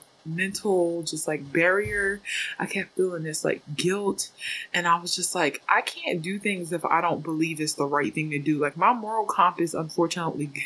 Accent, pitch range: American, 165-210 Hz